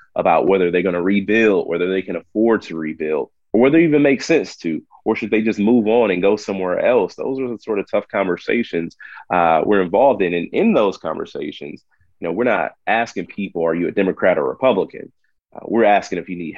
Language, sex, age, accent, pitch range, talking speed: English, male, 30-49, American, 85-100 Hz, 220 wpm